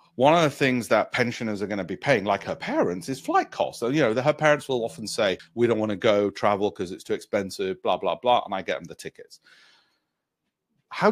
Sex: male